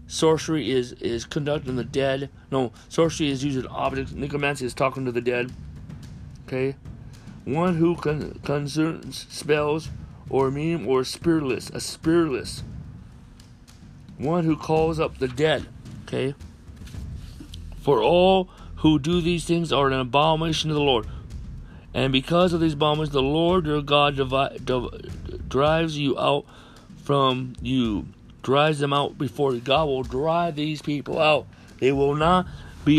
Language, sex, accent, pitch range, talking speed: English, male, American, 130-175 Hz, 140 wpm